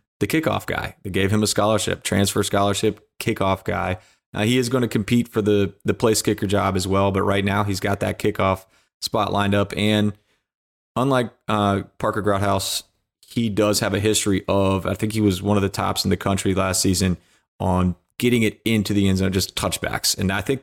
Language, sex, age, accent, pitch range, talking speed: English, male, 30-49, American, 95-105 Hz, 210 wpm